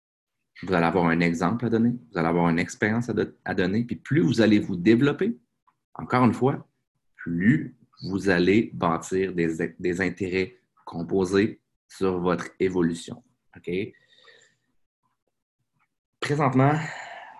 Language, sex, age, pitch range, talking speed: French, male, 30-49, 90-125 Hz, 130 wpm